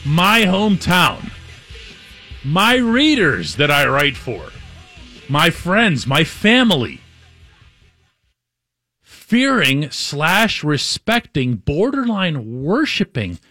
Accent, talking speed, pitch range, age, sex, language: American, 75 wpm, 125-200 Hz, 40-59, male, English